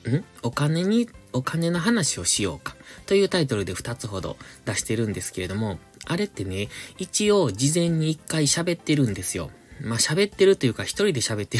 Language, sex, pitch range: Japanese, male, 105-155 Hz